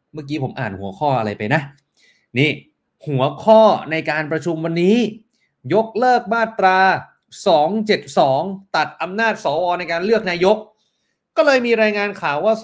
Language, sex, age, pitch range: Thai, male, 30-49, 135-180 Hz